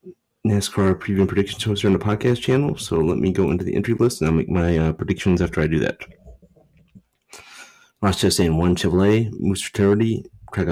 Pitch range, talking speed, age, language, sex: 90-100 Hz, 190 wpm, 30-49, English, male